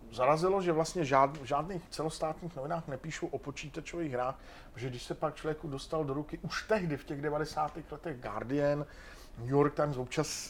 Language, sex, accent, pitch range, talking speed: Czech, male, native, 140-165 Hz, 175 wpm